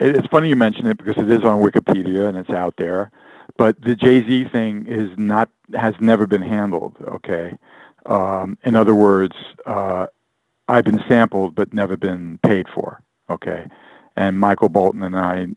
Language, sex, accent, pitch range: English, male, American, 95-110 Hz